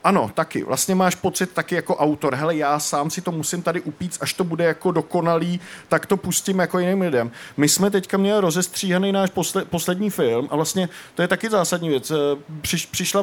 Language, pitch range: Czech, 160-190 Hz